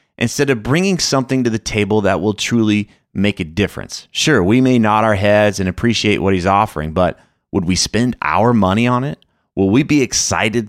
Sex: male